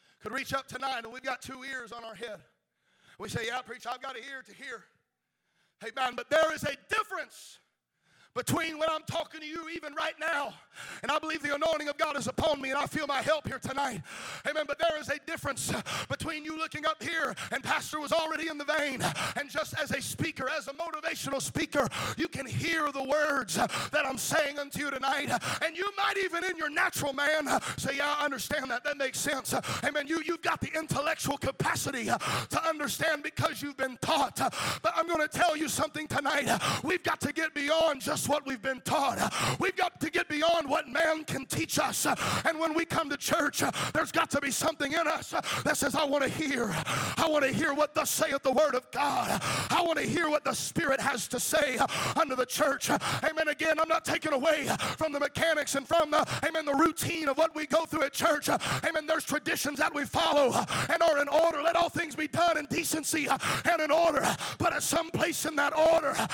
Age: 40-59